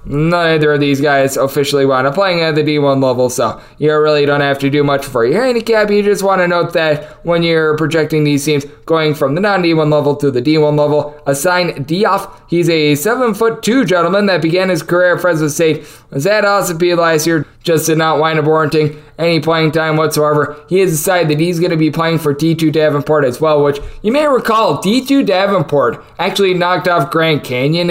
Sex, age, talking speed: male, 20-39, 220 wpm